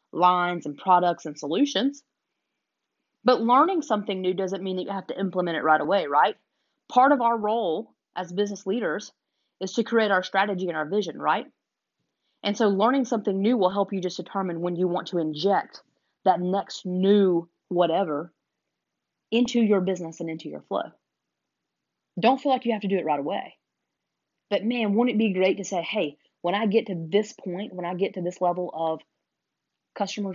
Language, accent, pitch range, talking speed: English, American, 175-225 Hz, 190 wpm